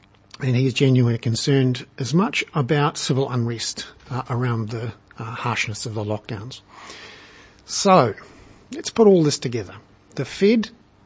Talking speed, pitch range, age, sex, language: 140 wpm, 110-145 Hz, 50-69, male, English